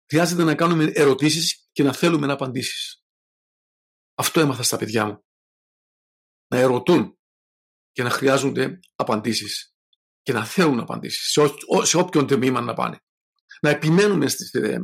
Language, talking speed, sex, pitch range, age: Greek, 140 wpm, male, 130-165 Hz, 50-69